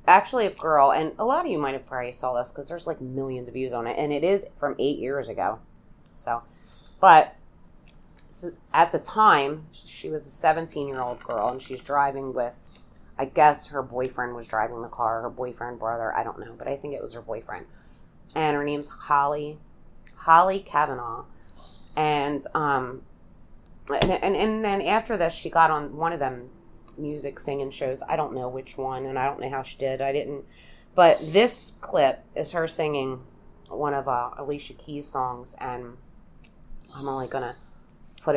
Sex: female